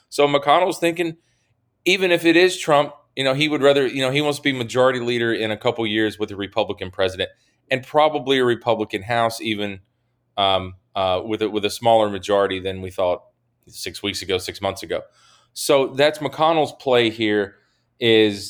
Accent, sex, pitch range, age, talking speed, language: American, male, 105-130 Hz, 30-49, 190 wpm, English